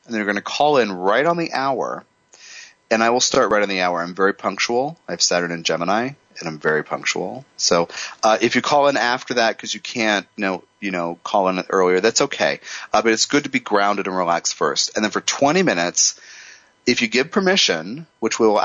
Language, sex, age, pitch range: English, male, 30-49, 95-120 Hz